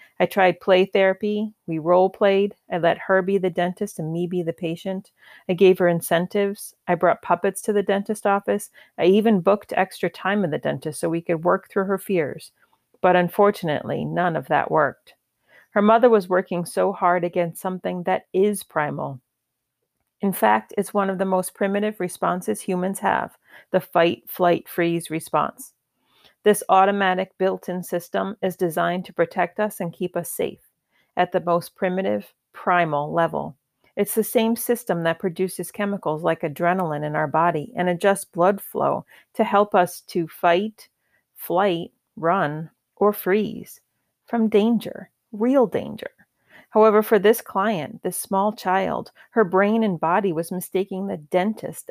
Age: 40-59